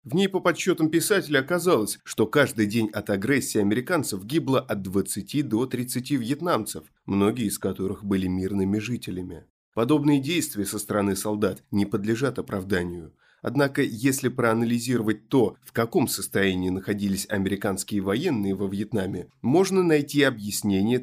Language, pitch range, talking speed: Russian, 100-130 Hz, 135 wpm